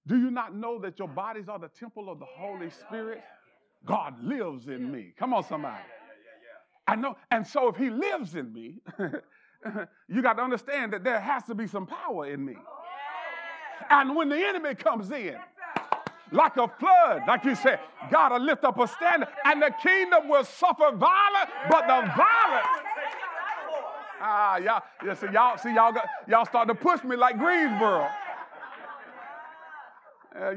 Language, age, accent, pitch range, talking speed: English, 40-59, American, 220-295 Hz, 170 wpm